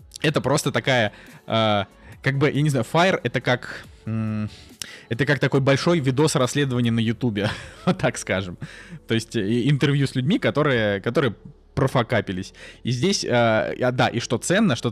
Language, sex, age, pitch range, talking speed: Russian, male, 20-39, 115-135 Hz, 150 wpm